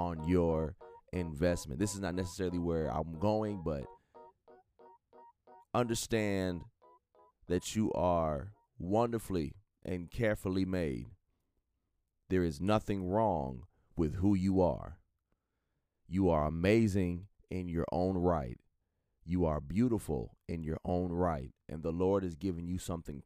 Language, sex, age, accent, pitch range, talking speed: English, male, 30-49, American, 80-100 Hz, 125 wpm